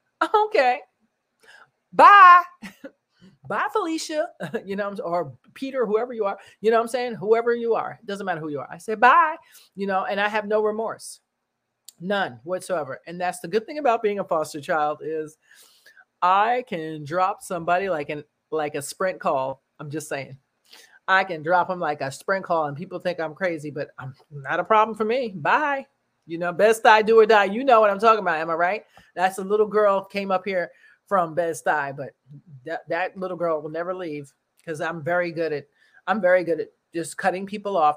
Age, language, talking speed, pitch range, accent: 40-59, English, 205 wpm, 165-230 Hz, American